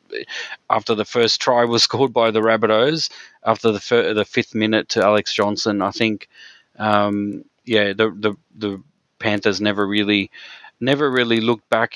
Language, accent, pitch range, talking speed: English, Australian, 105-125 Hz, 160 wpm